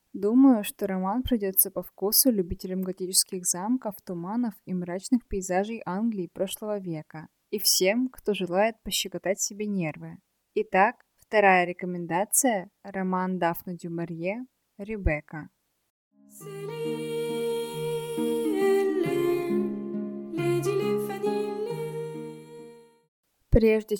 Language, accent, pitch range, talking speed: Russian, native, 175-210 Hz, 80 wpm